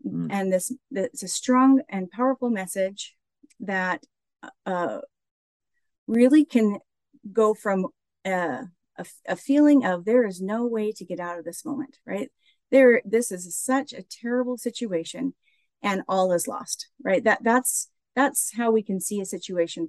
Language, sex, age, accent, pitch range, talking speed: English, female, 40-59, American, 190-260 Hz, 150 wpm